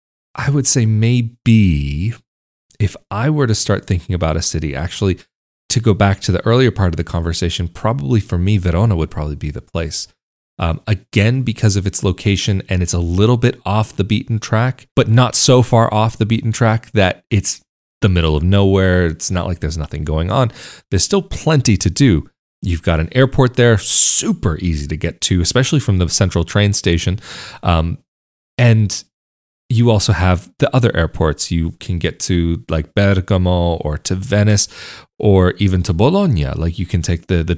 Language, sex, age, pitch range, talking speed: English, male, 30-49, 85-120 Hz, 185 wpm